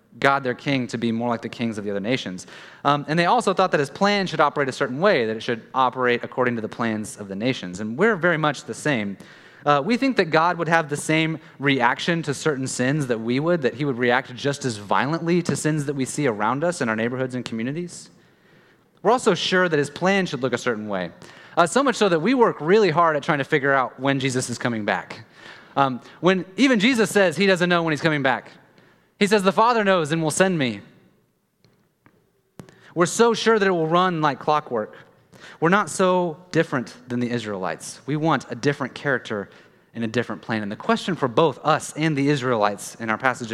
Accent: American